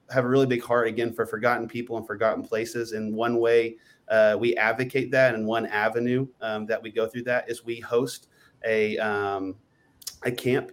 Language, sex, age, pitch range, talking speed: English, male, 30-49, 110-120 Hz, 195 wpm